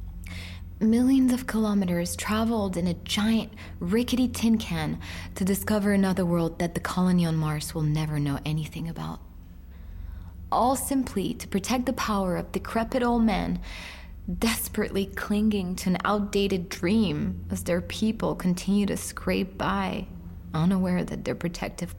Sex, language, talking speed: female, English, 140 wpm